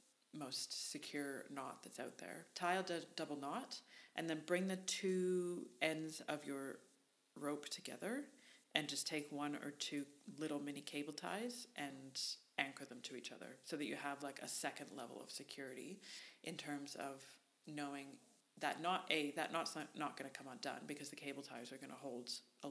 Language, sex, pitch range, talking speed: English, female, 145-170 Hz, 185 wpm